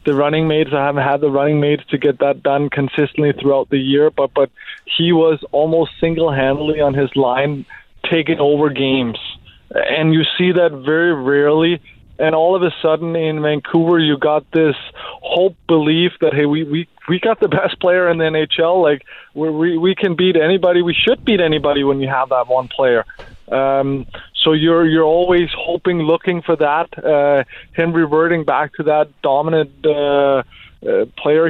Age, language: 20-39, English